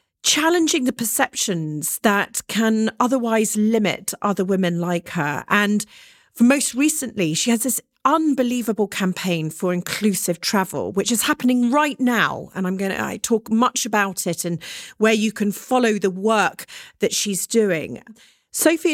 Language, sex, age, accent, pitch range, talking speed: English, female, 40-59, British, 180-235 Hz, 150 wpm